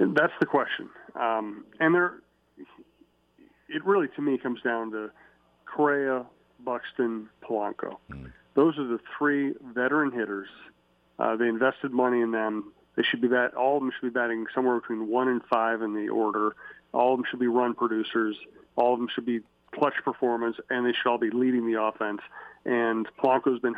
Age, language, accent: 40-59, English, American